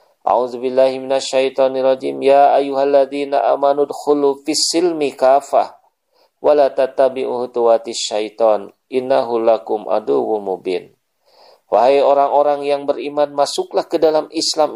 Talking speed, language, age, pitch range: 105 wpm, Indonesian, 40-59, 115-140 Hz